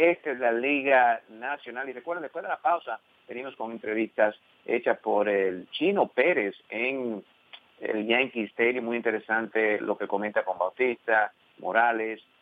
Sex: male